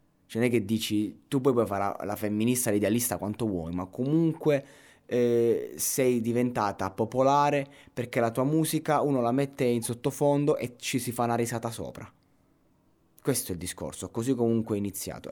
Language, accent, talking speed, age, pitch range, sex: Italian, native, 170 wpm, 20-39, 105-145 Hz, male